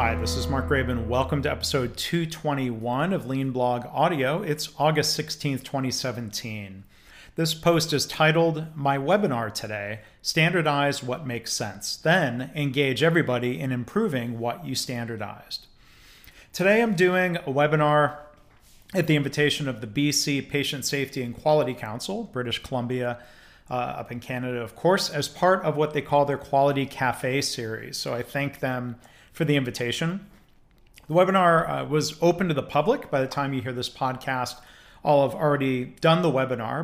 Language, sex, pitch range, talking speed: English, male, 125-150 Hz, 160 wpm